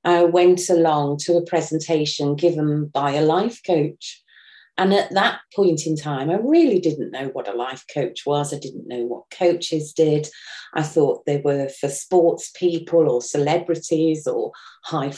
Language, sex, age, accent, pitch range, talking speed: English, female, 40-59, British, 155-190 Hz, 170 wpm